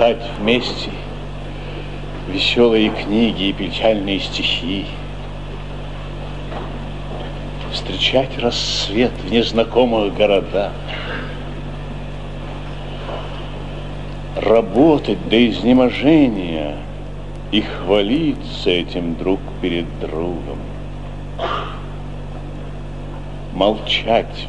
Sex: male